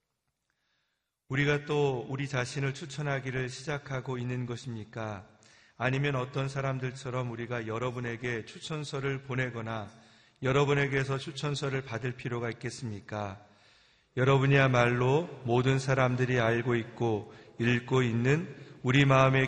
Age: 40-59